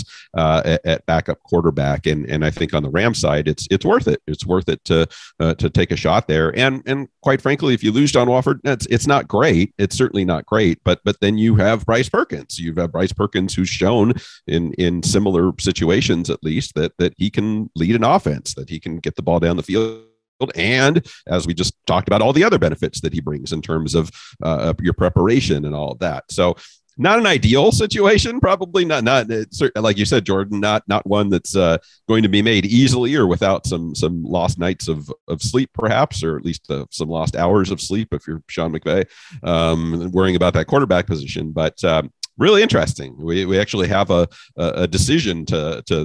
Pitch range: 80-110 Hz